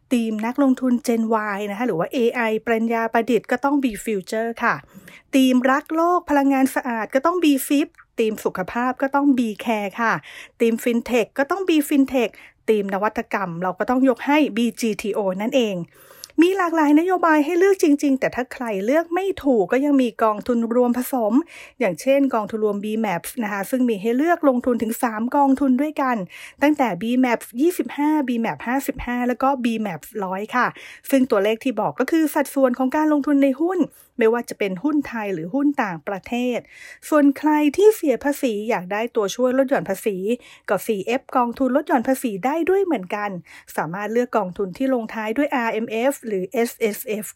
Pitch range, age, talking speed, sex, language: 220-280 Hz, 30-49, 45 wpm, female, English